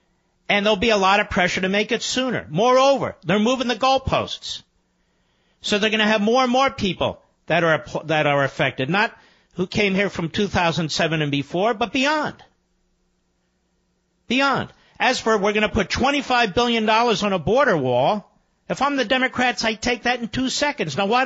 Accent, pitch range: American, 190-255 Hz